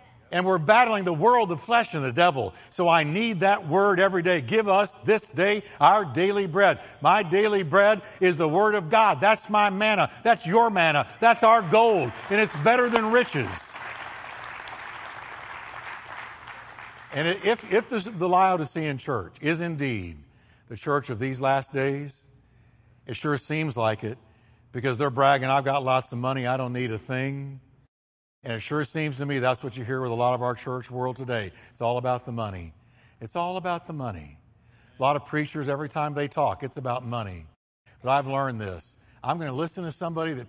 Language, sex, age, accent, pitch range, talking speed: English, male, 60-79, American, 120-175 Hz, 190 wpm